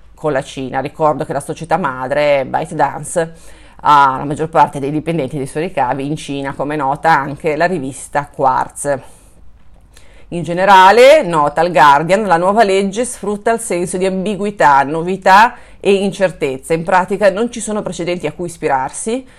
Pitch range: 145-190 Hz